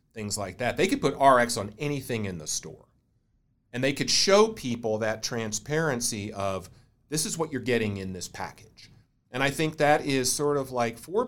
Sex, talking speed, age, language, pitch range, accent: male, 195 wpm, 40-59, English, 110-140 Hz, American